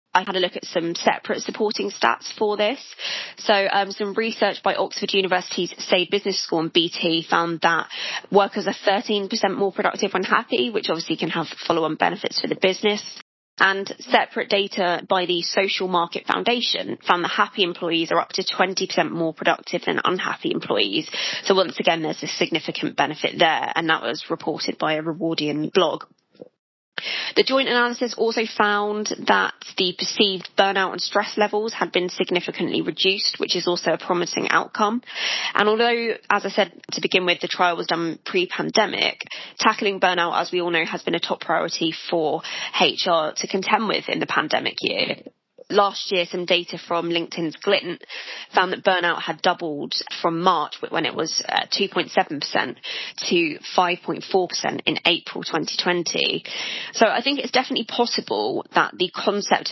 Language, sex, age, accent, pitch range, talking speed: English, female, 20-39, British, 175-210 Hz, 165 wpm